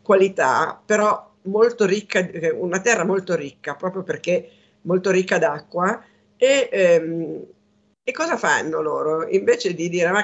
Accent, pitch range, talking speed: native, 165-205 Hz, 135 wpm